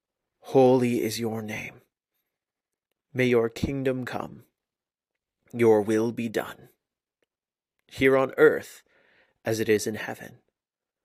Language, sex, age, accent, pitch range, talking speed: English, male, 30-49, American, 115-135 Hz, 110 wpm